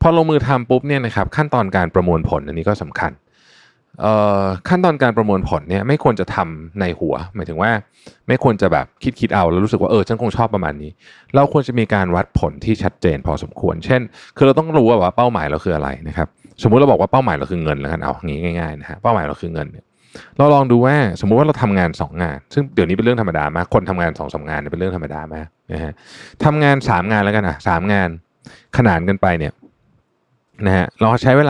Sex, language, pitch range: male, Thai, 85-120 Hz